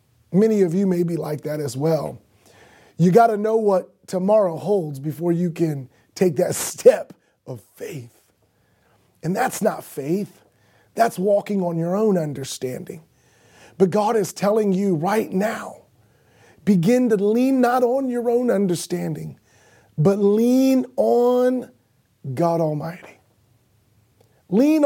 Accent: American